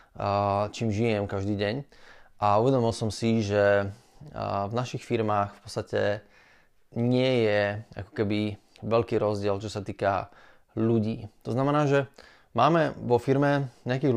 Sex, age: male, 20-39